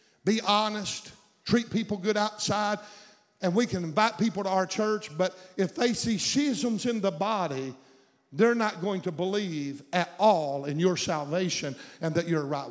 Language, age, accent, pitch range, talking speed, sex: English, 50-69, American, 185-235 Hz, 170 wpm, male